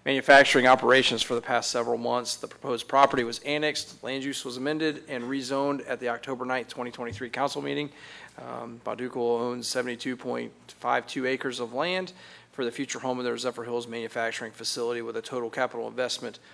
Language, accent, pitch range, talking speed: English, American, 115-135 Hz, 170 wpm